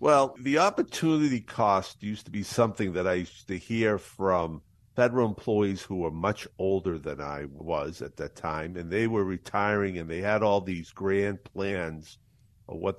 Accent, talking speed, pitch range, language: American, 180 wpm, 95-125 Hz, English